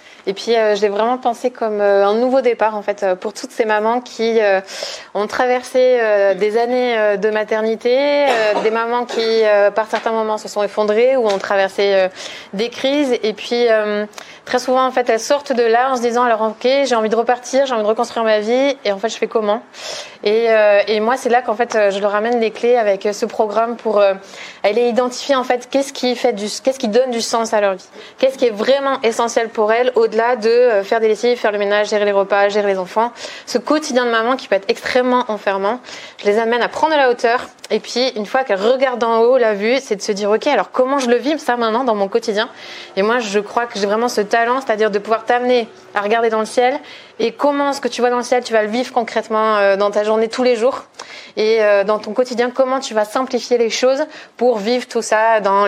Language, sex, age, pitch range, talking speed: French, female, 20-39, 210-245 Hz, 245 wpm